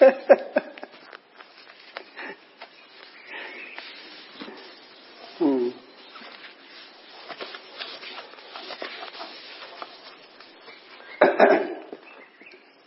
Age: 60-79